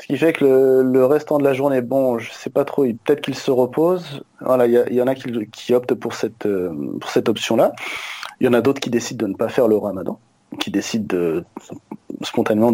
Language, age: French, 30-49